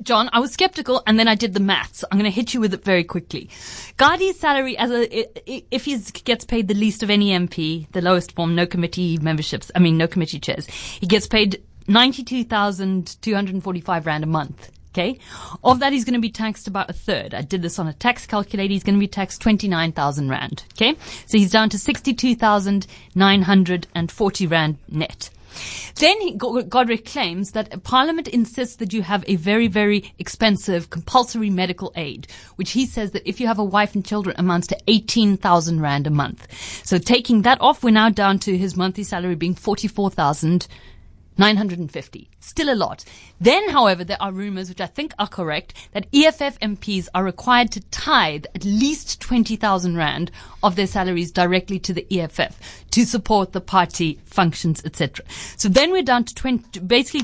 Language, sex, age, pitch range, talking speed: English, female, 30-49, 180-240 Hz, 180 wpm